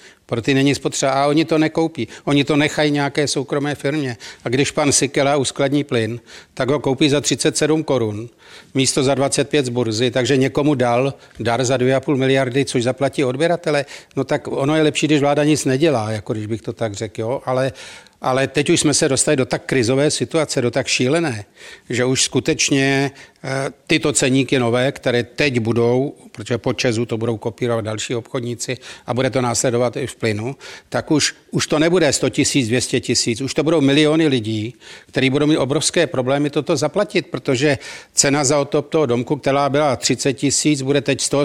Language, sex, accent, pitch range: Czech, male, native, 125-150 Hz